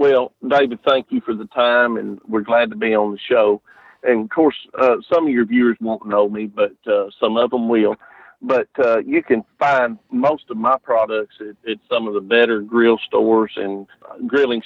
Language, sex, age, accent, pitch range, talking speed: English, male, 50-69, American, 110-130 Hz, 210 wpm